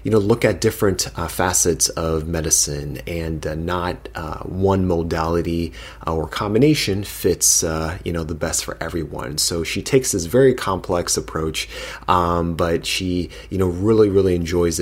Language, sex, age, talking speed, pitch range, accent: English, male, 30-49, 160 wpm, 95-135 Hz, American